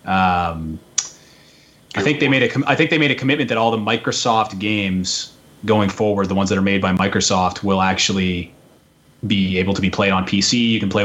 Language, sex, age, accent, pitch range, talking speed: English, male, 30-49, American, 95-115 Hz, 210 wpm